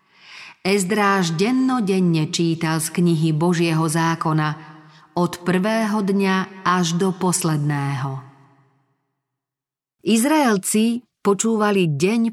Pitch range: 160-195 Hz